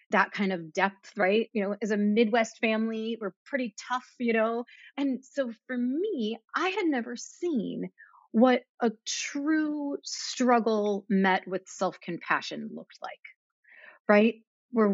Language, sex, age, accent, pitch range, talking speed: English, female, 30-49, American, 190-235 Hz, 140 wpm